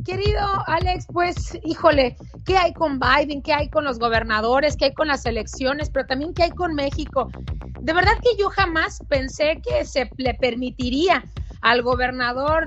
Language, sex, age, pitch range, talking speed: Spanish, female, 30-49, 260-325 Hz, 170 wpm